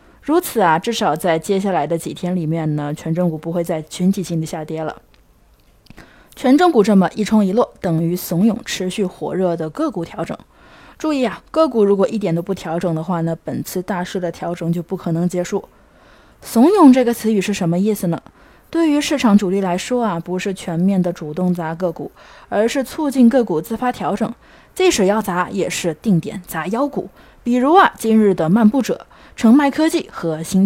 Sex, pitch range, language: female, 170-235 Hz, Chinese